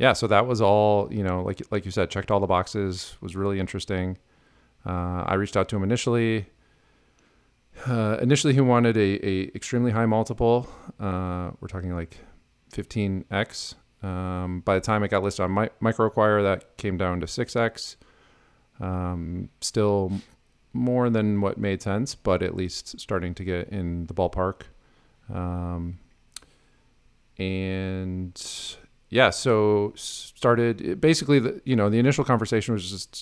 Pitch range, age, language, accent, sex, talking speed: 90-110 Hz, 40-59, English, American, male, 155 wpm